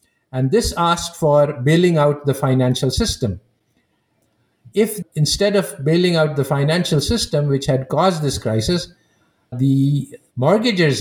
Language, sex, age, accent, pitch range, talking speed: English, male, 50-69, Indian, 140-190 Hz, 130 wpm